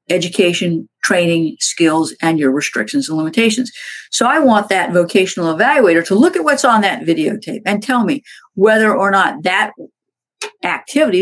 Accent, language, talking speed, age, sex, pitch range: American, English, 155 wpm, 50-69, female, 165-230 Hz